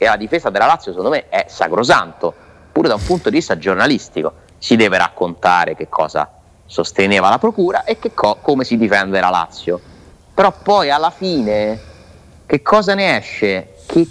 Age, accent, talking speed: 30-49, native, 175 wpm